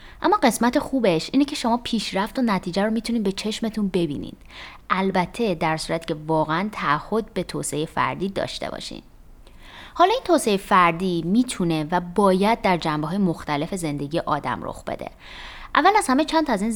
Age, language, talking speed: 20-39, Persian, 160 wpm